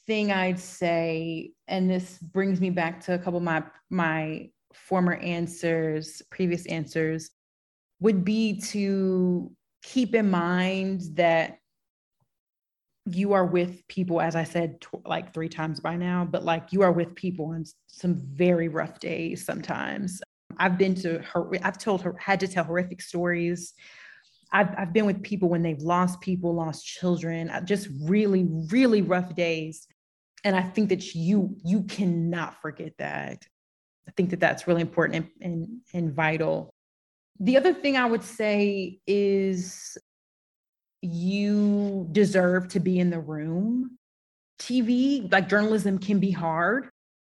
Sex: female